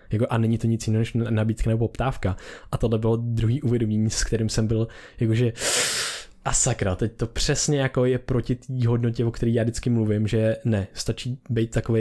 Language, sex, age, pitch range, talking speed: Czech, male, 20-39, 105-120 Hz, 185 wpm